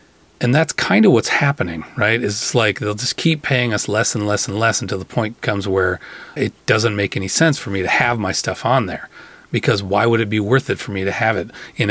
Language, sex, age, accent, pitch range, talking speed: English, male, 30-49, American, 100-130 Hz, 250 wpm